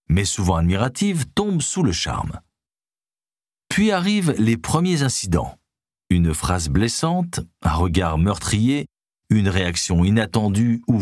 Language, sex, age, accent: French, male, 50-69, French